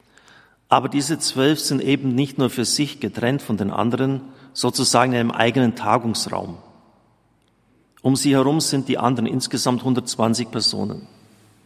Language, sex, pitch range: German, male, 110-135 Hz